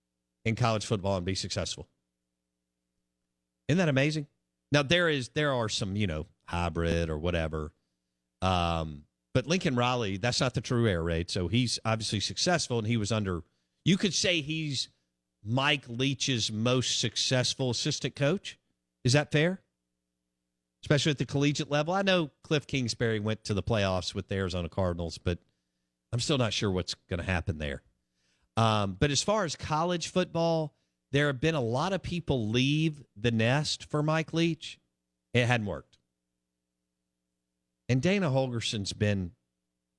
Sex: male